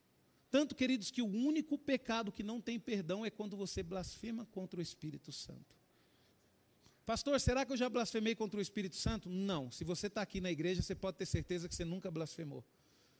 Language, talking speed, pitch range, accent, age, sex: Portuguese, 195 wpm, 170-240 Hz, Brazilian, 40-59, male